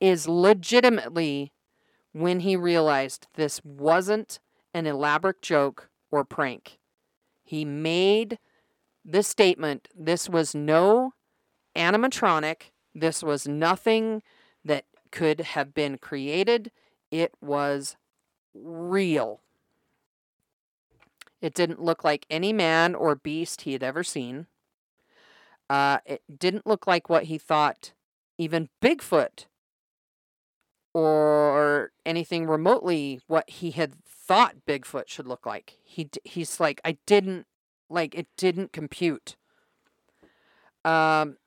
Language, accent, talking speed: English, American, 105 wpm